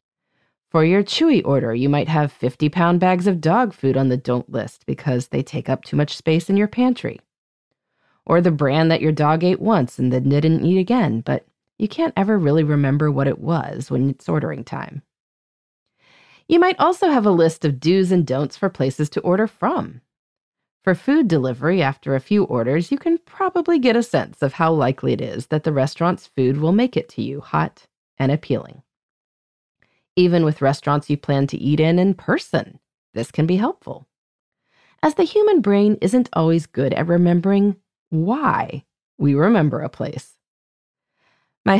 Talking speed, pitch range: 180 wpm, 140-200 Hz